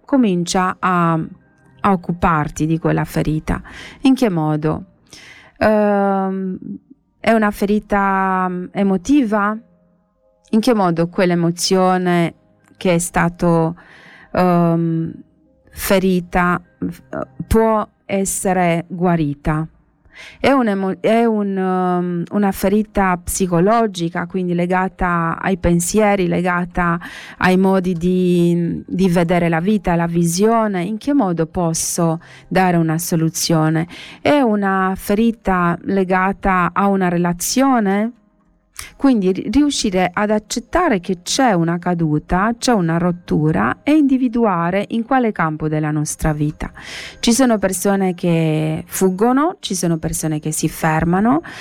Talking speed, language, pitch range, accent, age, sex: 100 wpm, Italian, 165-205 Hz, native, 30-49, female